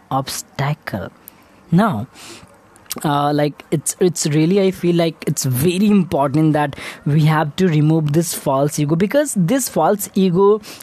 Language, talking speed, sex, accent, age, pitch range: English, 140 wpm, female, Indian, 20-39, 155-200 Hz